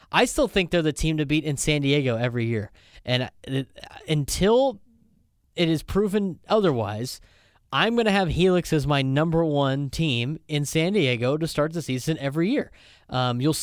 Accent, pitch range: American, 125-160 Hz